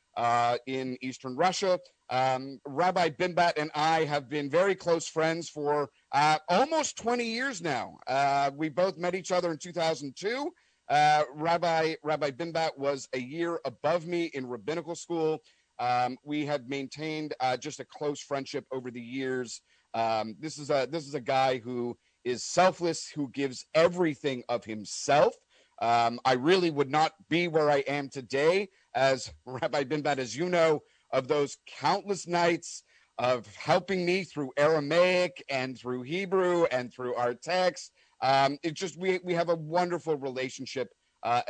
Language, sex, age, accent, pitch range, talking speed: English, male, 40-59, American, 130-170 Hz, 160 wpm